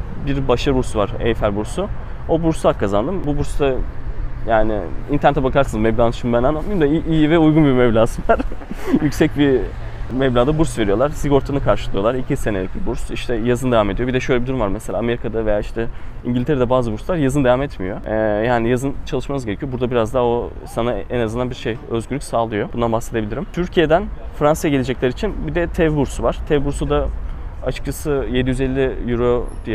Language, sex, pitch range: Turkish, male, 115-145 Hz